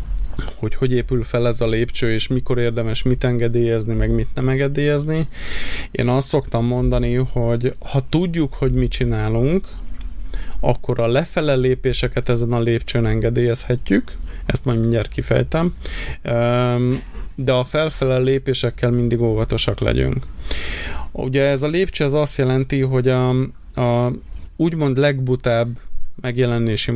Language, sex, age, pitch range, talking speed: Hungarian, male, 20-39, 115-130 Hz, 130 wpm